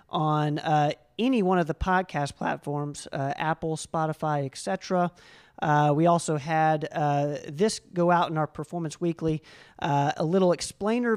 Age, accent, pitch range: 40-59, American, 155-180 Hz